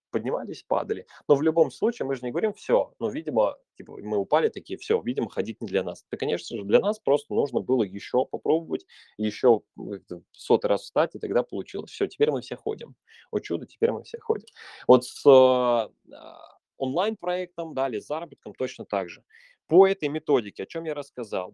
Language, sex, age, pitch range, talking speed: Russian, male, 20-39, 115-160 Hz, 195 wpm